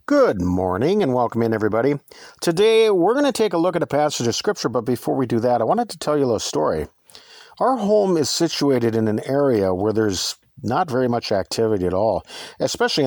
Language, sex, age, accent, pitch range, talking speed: English, male, 50-69, American, 120-185 Hz, 215 wpm